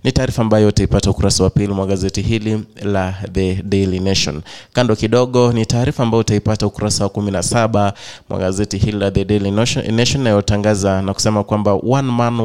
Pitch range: 105-130 Hz